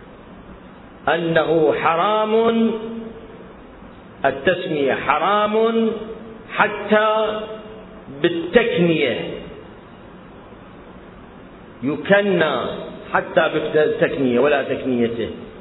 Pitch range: 145-205 Hz